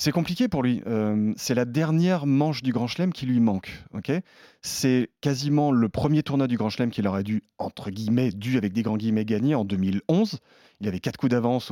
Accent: French